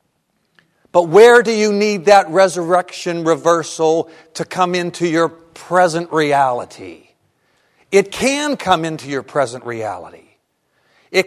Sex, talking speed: male, 115 wpm